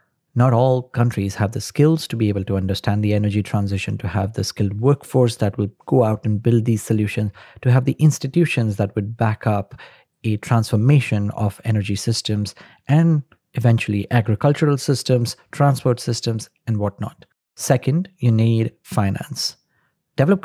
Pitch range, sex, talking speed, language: 105-130 Hz, male, 155 wpm, English